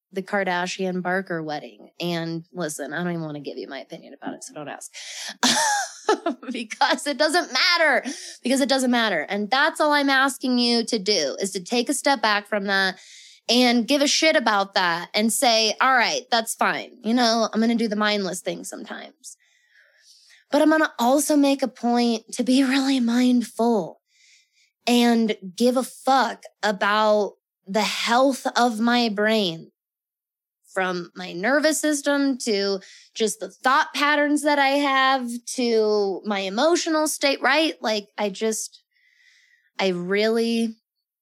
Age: 20-39